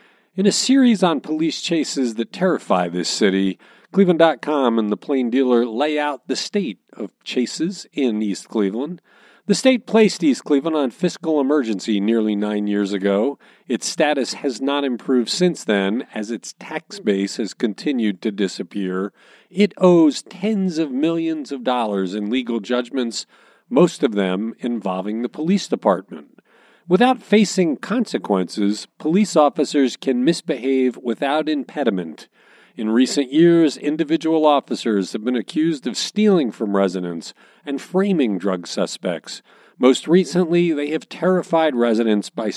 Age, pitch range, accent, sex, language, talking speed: 40-59, 110-175 Hz, American, male, English, 140 wpm